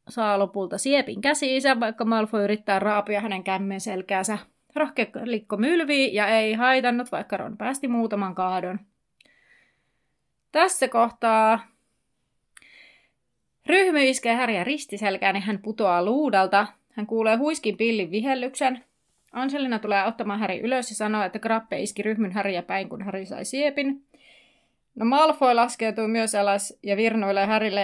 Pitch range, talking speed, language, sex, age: 200-250 Hz, 130 wpm, Finnish, female, 30-49